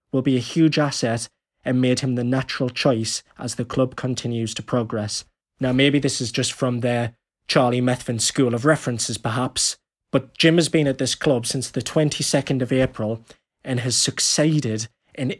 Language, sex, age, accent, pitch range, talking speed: English, male, 20-39, British, 120-135 Hz, 180 wpm